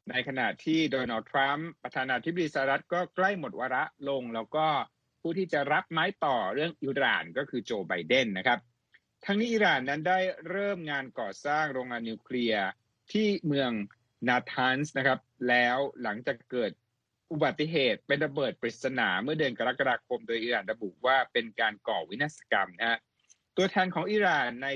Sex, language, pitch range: male, Thai, 115-155 Hz